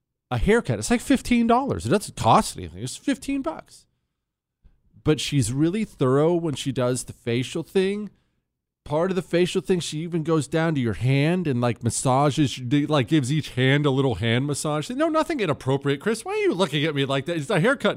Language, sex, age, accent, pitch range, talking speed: English, male, 40-59, American, 125-190 Hz, 195 wpm